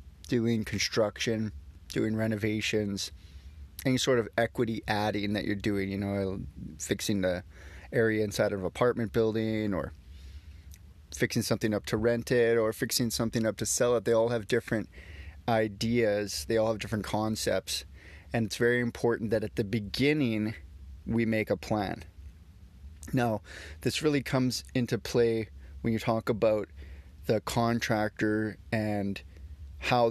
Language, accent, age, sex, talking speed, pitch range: English, American, 30-49, male, 145 wpm, 85-115 Hz